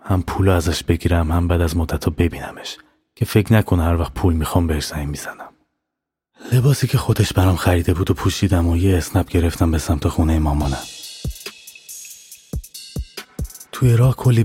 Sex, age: male, 30-49